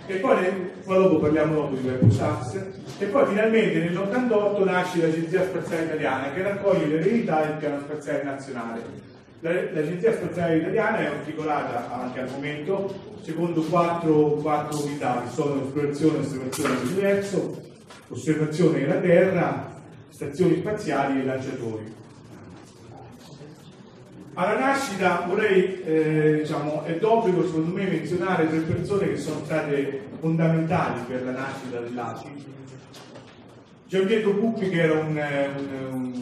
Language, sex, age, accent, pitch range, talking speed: Italian, male, 40-59, native, 130-185 Hz, 120 wpm